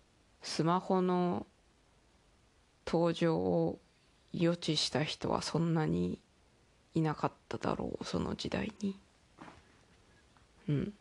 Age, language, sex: 20-39, Japanese, female